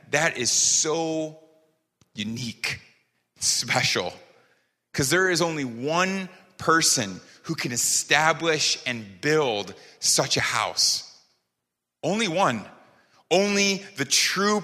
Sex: male